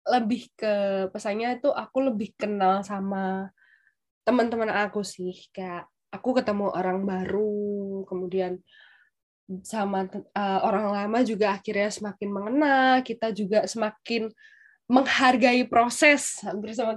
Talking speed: 110 wpm